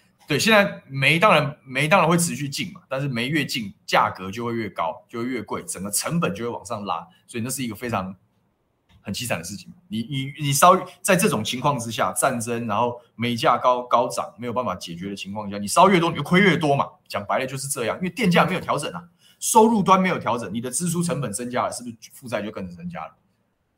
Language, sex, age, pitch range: Chinese, male, 20-39, 115-170 Hz